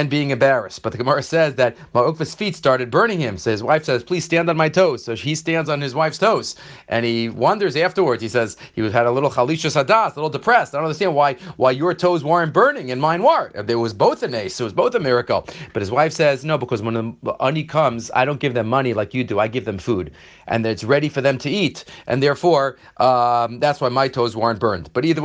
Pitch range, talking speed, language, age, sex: 125-170 Hz, 255 wpm, English, 40-59, male